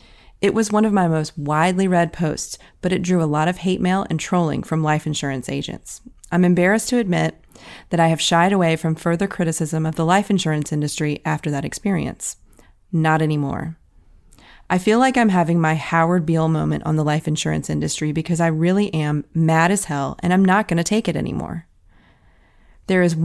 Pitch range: 155-200 Hz